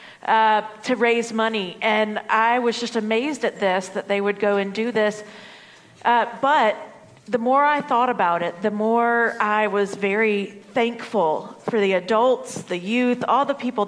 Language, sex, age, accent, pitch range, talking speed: English, female, 40-59, American, 195-235 Hz, 175 wpm